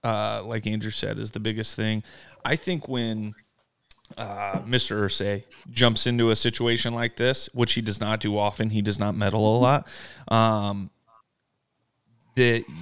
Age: 30-49